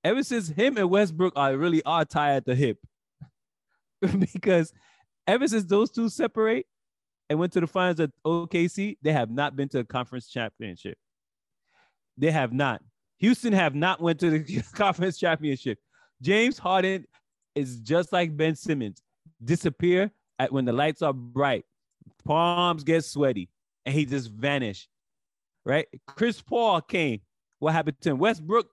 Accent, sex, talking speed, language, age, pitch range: American, male, 150 wpm, English, 30-49, 140-185 Hz